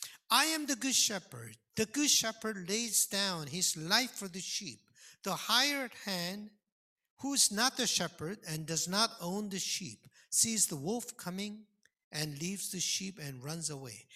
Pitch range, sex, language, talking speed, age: 165-270 Hz, male, English, 170 wpm, 50-69